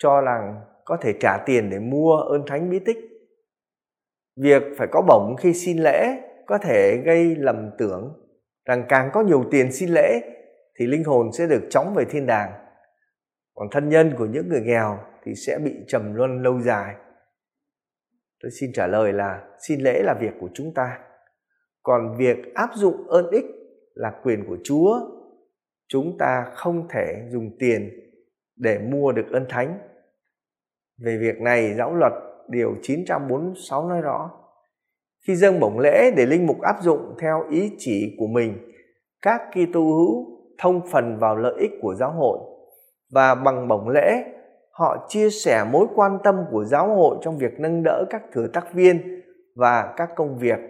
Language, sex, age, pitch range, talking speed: Vietnamese, male, 20-39, 125-185 Hz, 175 wpm